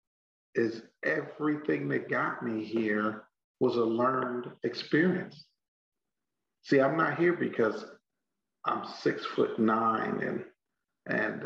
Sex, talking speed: male, 110 wpm